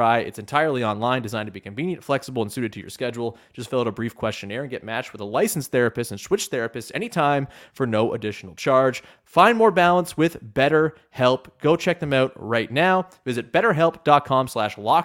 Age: 30-49